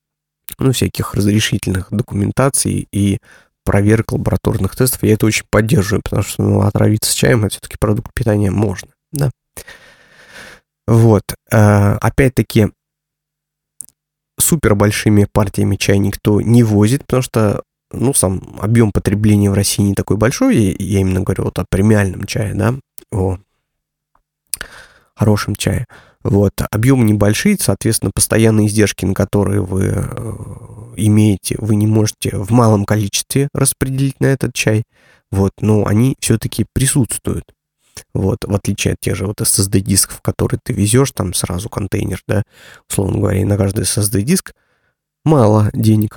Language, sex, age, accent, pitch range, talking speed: Russian, male, 20-39, native, 100-120 Hz, 135 wpm